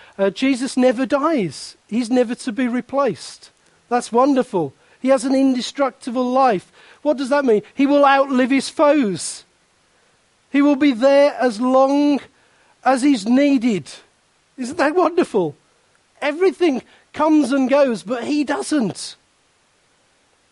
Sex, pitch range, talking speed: male, 170-265 Hz, 130 wpm